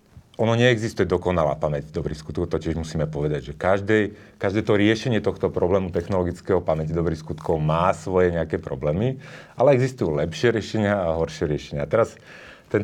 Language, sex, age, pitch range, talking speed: Slovak, male, 40-59, 80-105 Hz, 155 wpm